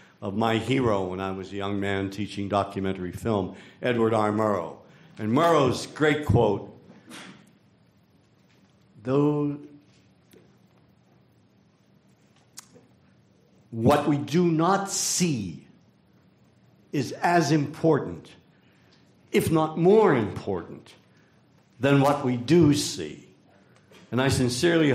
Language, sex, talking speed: English, male, 95 wpm